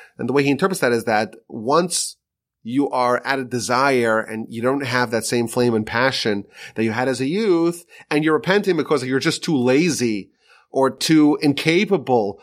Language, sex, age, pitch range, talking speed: English, male, 30-49, 120-155 Hz, 195 wpm